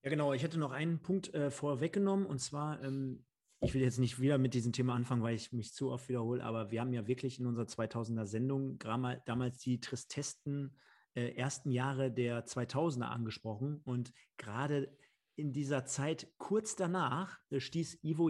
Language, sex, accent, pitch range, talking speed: German, male, German, 120-150 Hz, 175 wpm